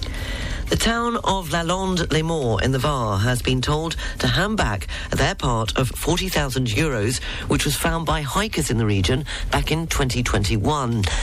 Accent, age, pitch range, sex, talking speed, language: British, 40-59, 120-155 Hz, female, 160 wpm, English